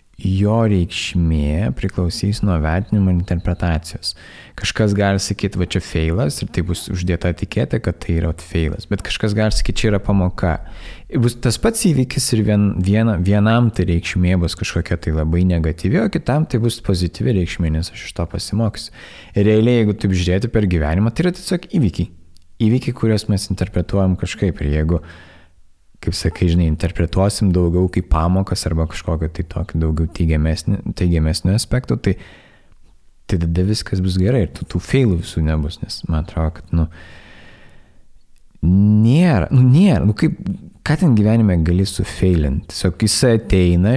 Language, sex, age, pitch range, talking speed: English, male, 20-39, 85-105 Hz, 155 wpm